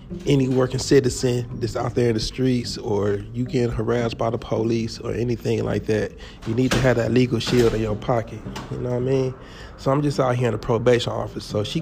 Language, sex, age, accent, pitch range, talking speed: English, male, 30-49, American, 110-130 Hz, 235 wpm